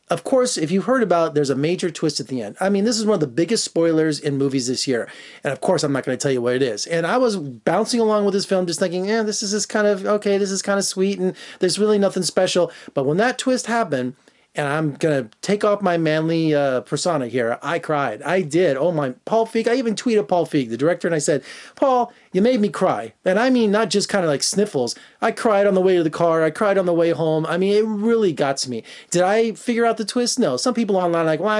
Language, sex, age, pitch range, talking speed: English, male, 30-49, 150-210 Hz, 280 wpm